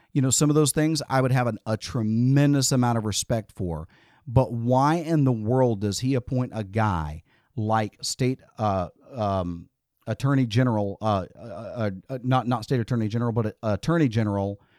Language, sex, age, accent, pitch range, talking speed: English, male, 40-59, American, 105-135 Hz, 175 wpm